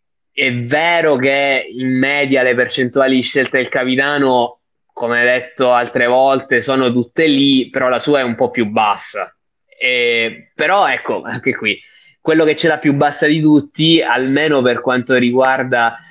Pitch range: 125-205 Hz